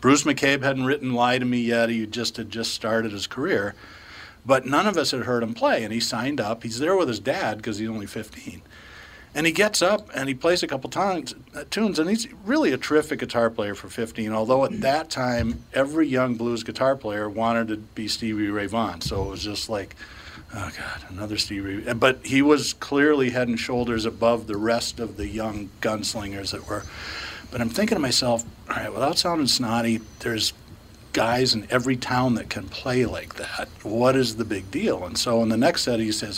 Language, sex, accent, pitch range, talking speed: English, male, American, 110-130 Hz, 215 wpm